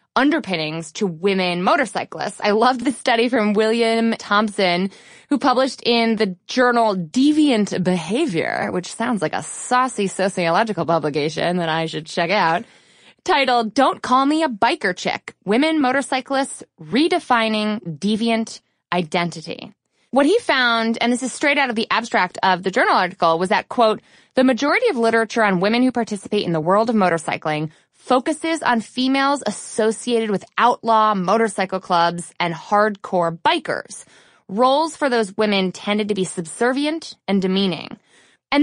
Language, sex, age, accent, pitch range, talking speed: English, female, 20-39, American, 180-250 Hz, 150 wpm